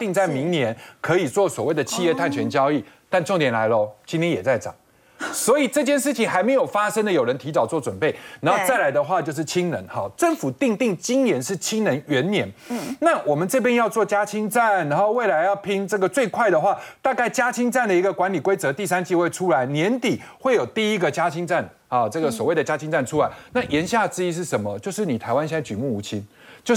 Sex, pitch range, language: male, 165-240 Hz, Chinese